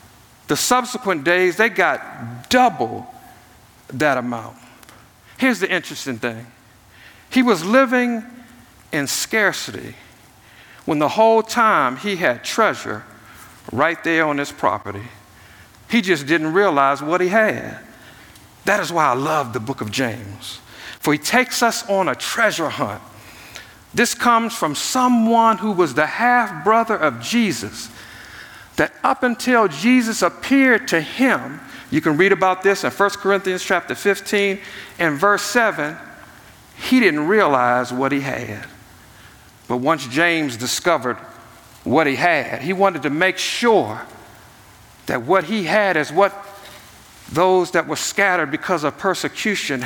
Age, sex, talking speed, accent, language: 50-69, male, 135 wpm, American, English